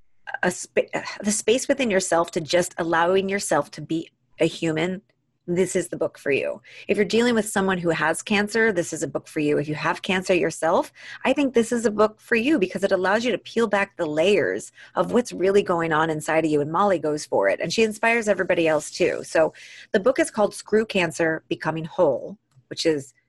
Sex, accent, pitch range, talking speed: female, American, 160-215 Hz, 215 wpm